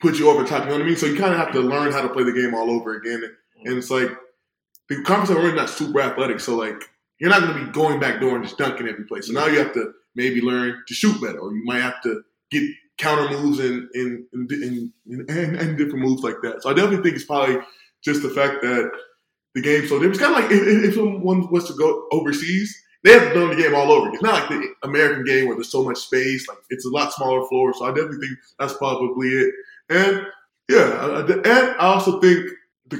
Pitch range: 125-170 Hz